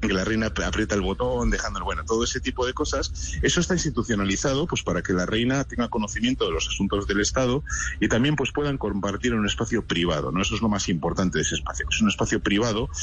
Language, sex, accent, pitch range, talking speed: Spanish, male, Spanish, 90-130 Hz, 230 wpm